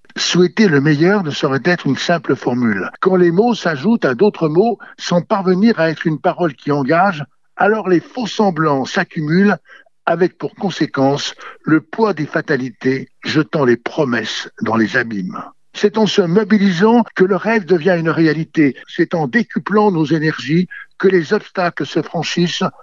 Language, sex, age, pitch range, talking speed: French, male, 60-79, 155-200 Hz, 160 wpm